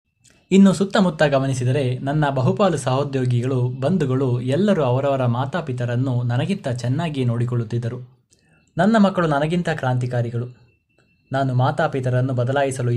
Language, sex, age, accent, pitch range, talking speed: Kannada, male, 20-39, native, 125-145 Hz, 95 wpm